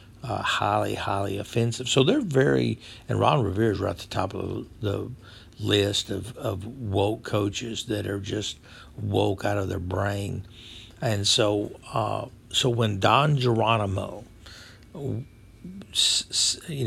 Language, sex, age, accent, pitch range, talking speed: English, male, 60-79, American, 100-115 Hz, 135 wpm